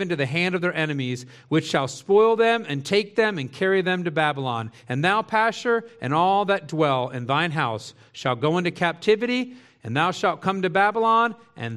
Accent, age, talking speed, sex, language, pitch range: American, 40-59, 200 wpm, male, English, 150-195 Hz